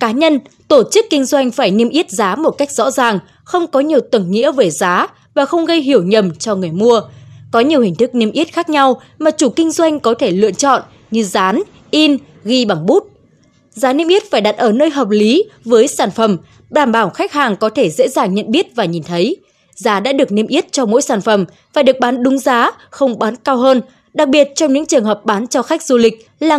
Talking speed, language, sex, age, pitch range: 240 wpm, Vietnamese, female, 20-39, 215-290 Hz